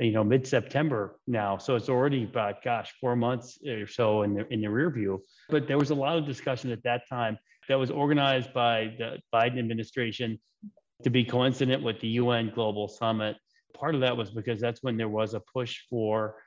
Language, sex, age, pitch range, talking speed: English, male, 30-49, 115-135 Hz, 200 wpm